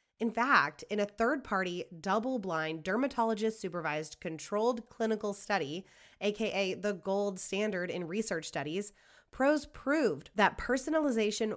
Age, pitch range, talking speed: 20-39, 180-235 Hz, 110 wpm